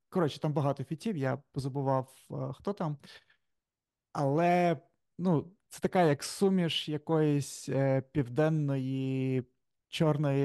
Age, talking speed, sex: 30-49, 100 wpm, male